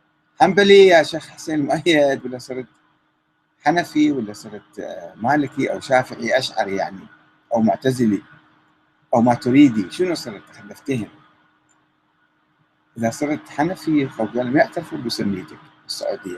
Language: Arabic